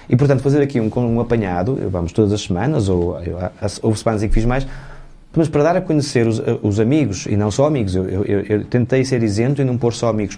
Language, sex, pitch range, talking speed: Portuguese, male, 110-140 Hz, 250 wpm